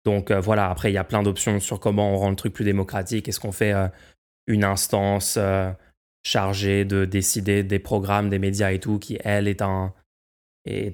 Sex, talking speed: male, 210 wpm